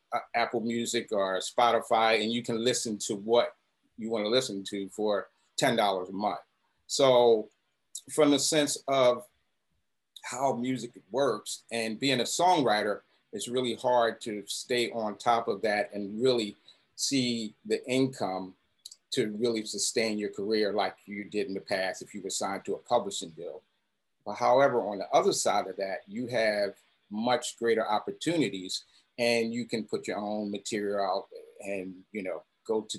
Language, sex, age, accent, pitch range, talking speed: English, male, 40-59, American, 105-130 Hz, 160 wpm